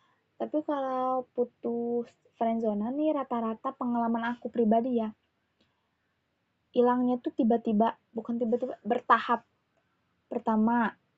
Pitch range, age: 215-240 Hz, 20-39